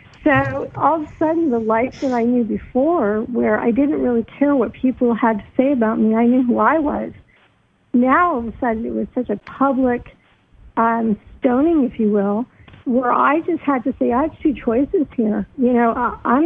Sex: female